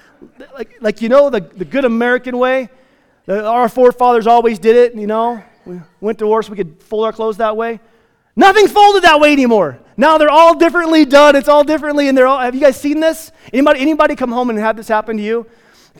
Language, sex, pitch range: English, male, 220-285 Hz